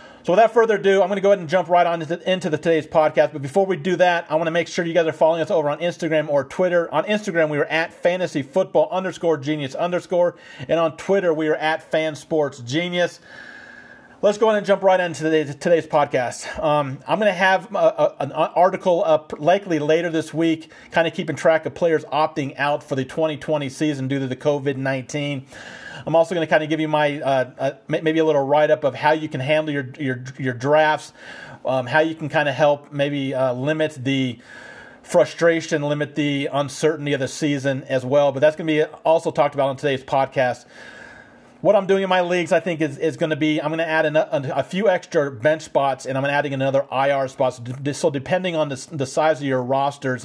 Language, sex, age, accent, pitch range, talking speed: English, male, 40-59, American, 135-165 Hz, 230 wpm